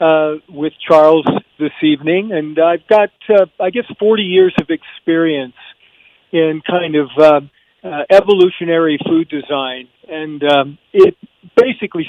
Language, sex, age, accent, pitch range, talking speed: English, male, 50-69, American, 150-180 Hz, 135 wpm